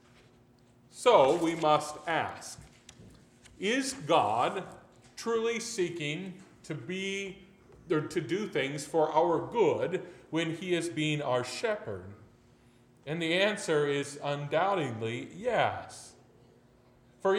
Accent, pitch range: American, 125-170 Hz